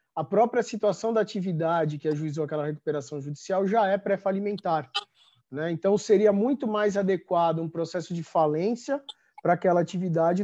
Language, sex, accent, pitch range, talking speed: Portuguese, male, Brazilian, 160-195 Hz, 145 wpm